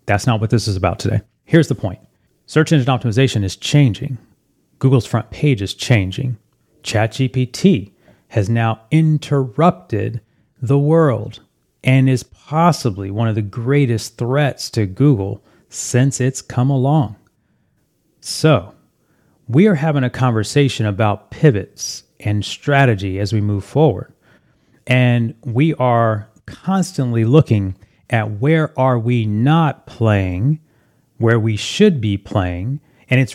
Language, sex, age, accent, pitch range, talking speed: English, male, 30-49, American, 110-150 Hz, 130 wpm